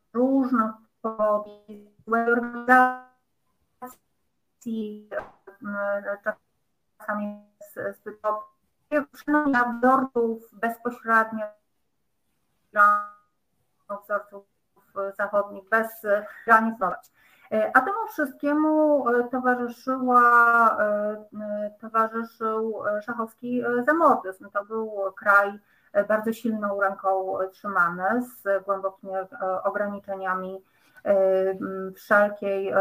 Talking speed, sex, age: 55 wpm, female, 30-49